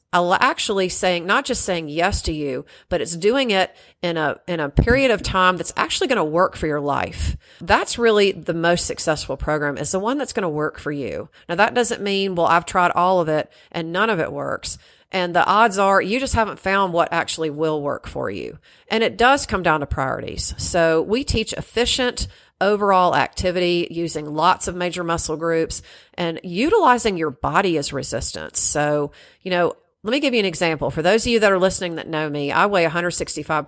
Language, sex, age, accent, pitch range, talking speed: English, female, 40-59, American, 160-205 Hz, 210 wpm